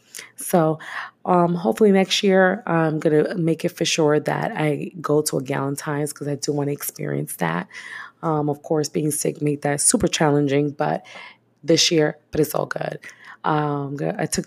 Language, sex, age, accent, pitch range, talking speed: English, female, 20-39, American, 145-185 Hz, 175 wpm